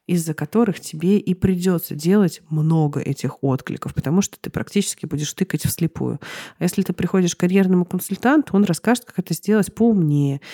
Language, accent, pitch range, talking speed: Russian, native, 155-185 Hz, 165 wpm